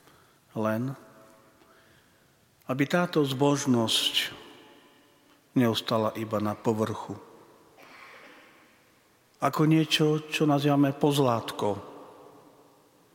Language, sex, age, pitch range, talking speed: Slovak, male, 50-69, 110-150 Hz, 60 wpm